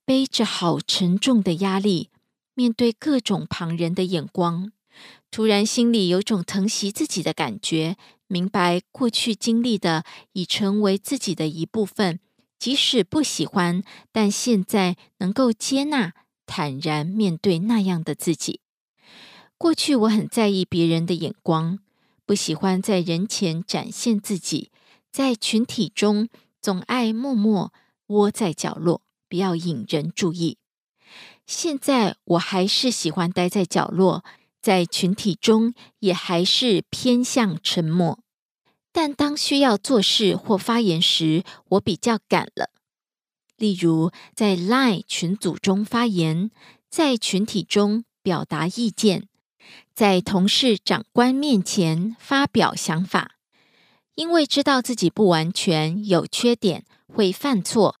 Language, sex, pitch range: Korean, female, 175-230 Hz